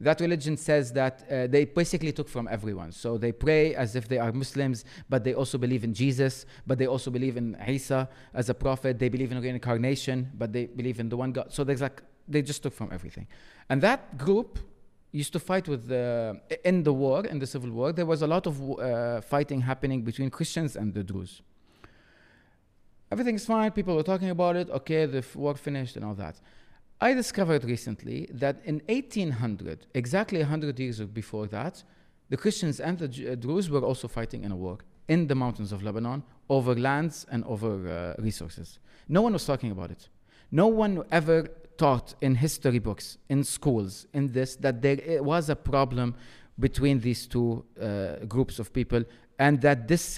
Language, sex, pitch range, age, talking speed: English, male, 120-155 Hz, 30-49, 190 wpm